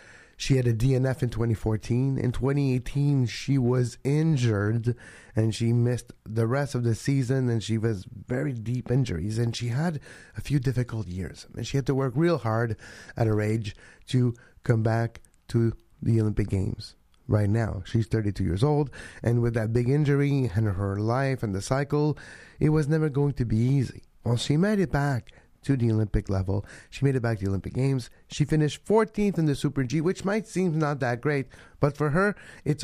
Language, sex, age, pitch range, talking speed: English, male, 30-49, 110-140 Hz, 195 wpm